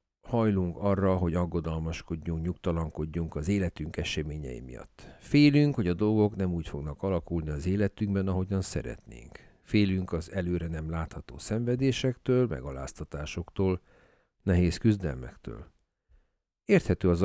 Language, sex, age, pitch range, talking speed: Hungarian, male, 50-69, 80-110 Hz, 110 wpm